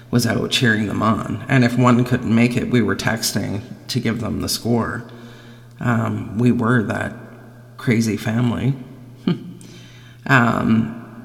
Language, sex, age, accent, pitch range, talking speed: English, male, 40-59, American, 120-135 Hz, 140 wpm